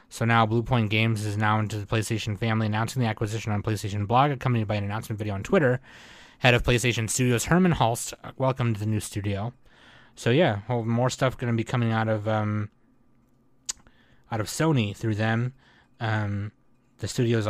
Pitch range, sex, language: 105-125 Hz, male, English